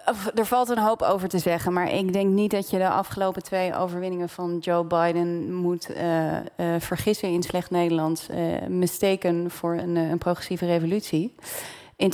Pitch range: 165-190 Hz